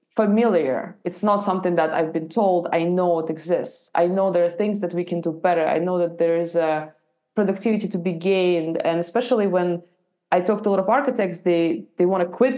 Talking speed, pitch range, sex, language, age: 225 wpm, 180-225 Hz, female, English, 20-39